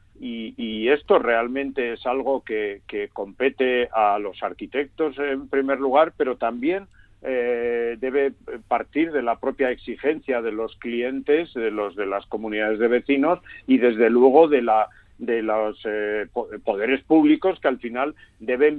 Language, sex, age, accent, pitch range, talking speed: Spanish, male, 50-69, Spanish, 120-150 Hz, 145 wpm